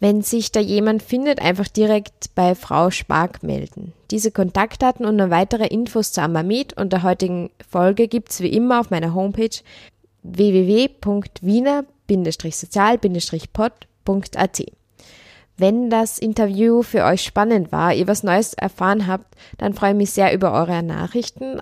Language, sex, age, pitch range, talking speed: German, female, 20-39, 180-220 Hz, 140 wpm